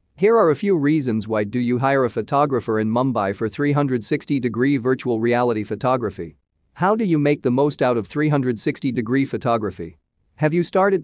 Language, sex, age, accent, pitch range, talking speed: English, male, 40-59, American, 110-145 Hz, 170 wpm